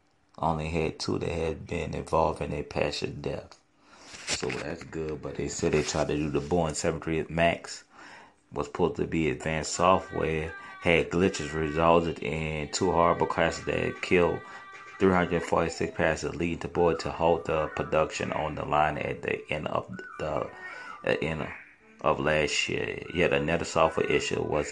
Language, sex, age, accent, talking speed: English, male, 30-49, American, 165 wpm